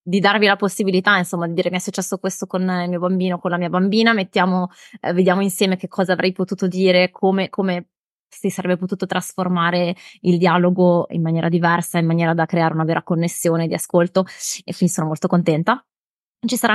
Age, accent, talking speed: 20-39, native, 195 wpm